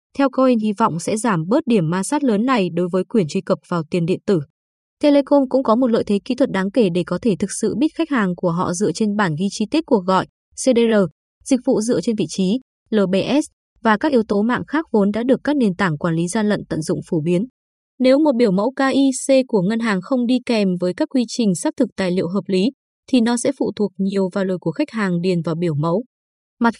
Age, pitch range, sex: 20-39, 190-255 Hz, female